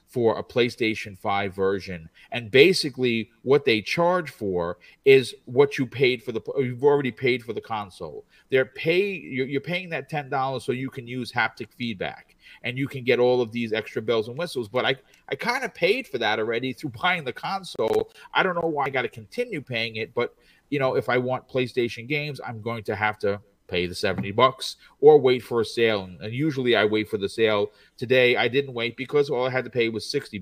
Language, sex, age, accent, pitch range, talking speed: English, male, 40-59, American, 110-145 Hz, 220 wpm